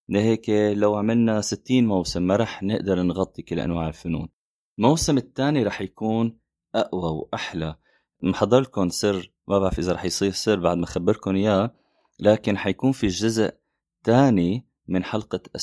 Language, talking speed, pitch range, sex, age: Arabic, 145 wpm, 90-110 Hz, male, 20-39